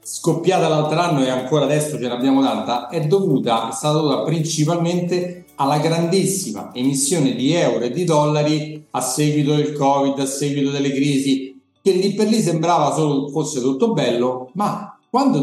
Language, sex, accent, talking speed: Italian, male, native, 165 wpm